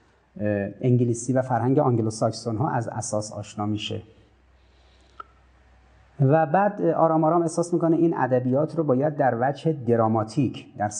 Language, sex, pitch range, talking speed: Persian, male, 105-130 Hz, 130 wpm